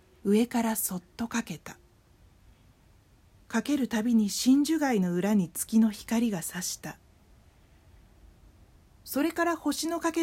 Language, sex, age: Japanese, female, 40-59